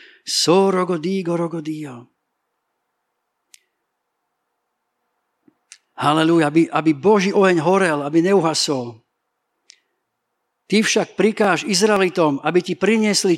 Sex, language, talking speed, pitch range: male, Slovak, 80 wpm, 160-200 Hz